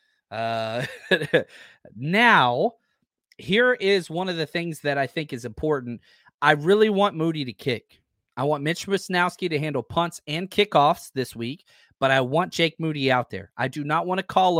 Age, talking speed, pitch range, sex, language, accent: 30-49, 175 wpm, 135-175 Hz, male, English, American